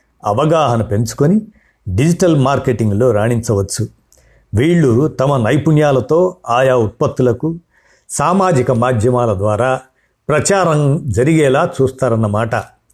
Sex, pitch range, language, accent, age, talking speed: male, 115-155 Hz, Telugu, native, 50-69, 75 wpm